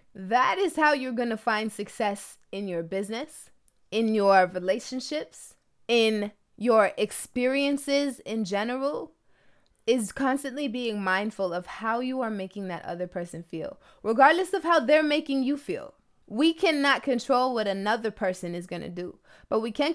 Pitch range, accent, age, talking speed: 205-265 Hz, American, 20-39, 150 wpm